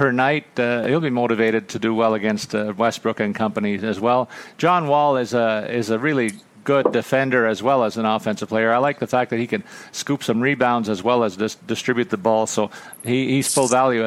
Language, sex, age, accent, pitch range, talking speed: English, male, 50-69, American, 110-125 Hz, 225 wpm